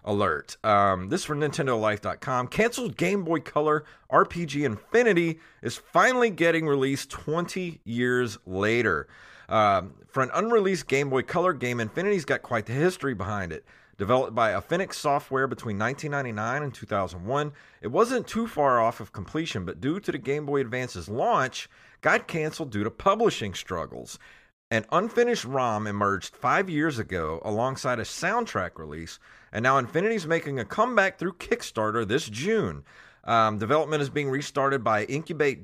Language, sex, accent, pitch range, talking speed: English, male, American, 110-160 Hz, 155 wpm